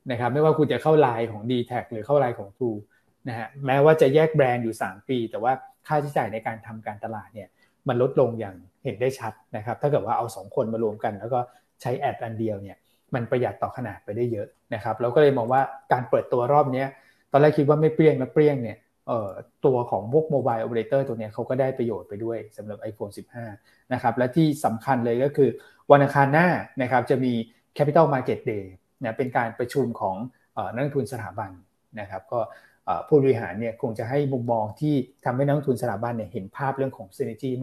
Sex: male